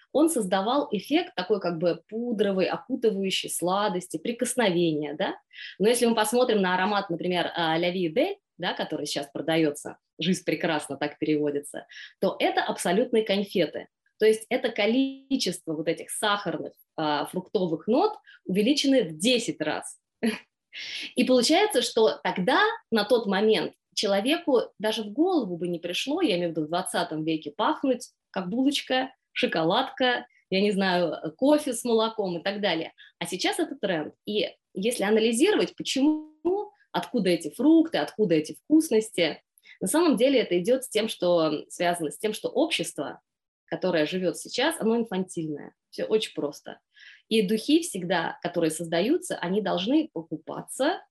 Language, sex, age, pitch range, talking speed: Russian, female, 20-39, 175-265 Hz, 145 wpm